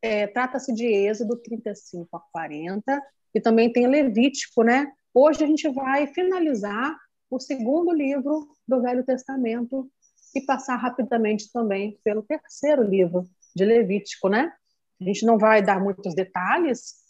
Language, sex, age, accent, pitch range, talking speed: Portuguese, female, 40-59, Brazilian, 205-285 Hz, 135 wpm